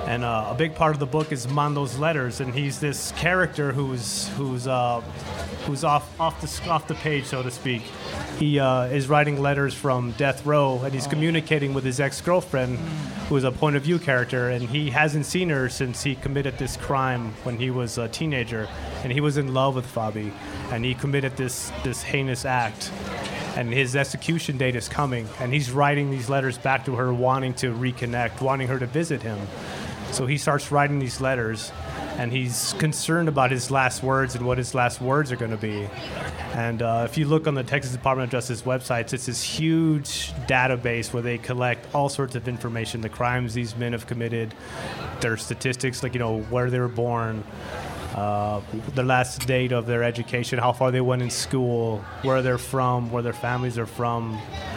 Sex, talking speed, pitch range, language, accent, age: male, 195 wpm, 120-140 Hz, English, American, 30-49